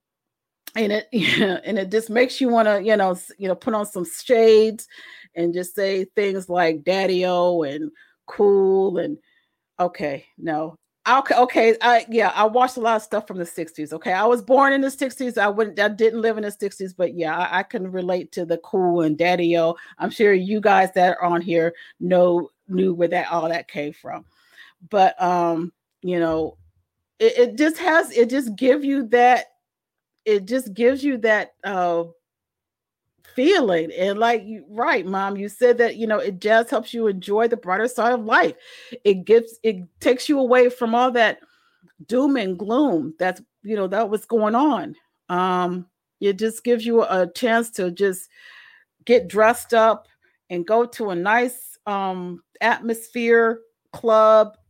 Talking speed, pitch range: 175 wpm, 180-235 Hz